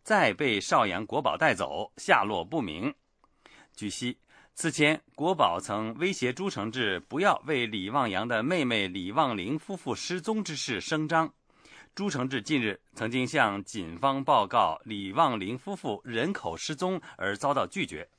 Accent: Chinese